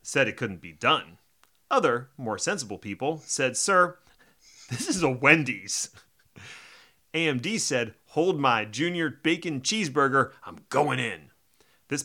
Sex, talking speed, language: male, 130 wpm, English